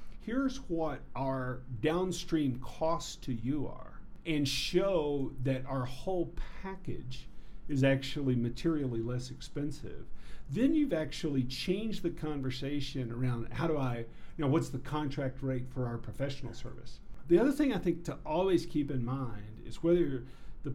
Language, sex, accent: English, male, American